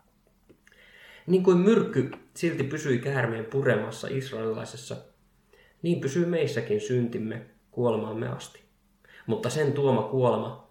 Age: 20-39